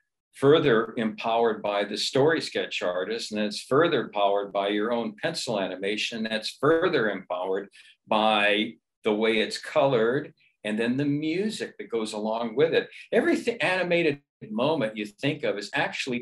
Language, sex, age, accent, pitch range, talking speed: English, male, 60-79, American, 105-135 Hz, 150 wpm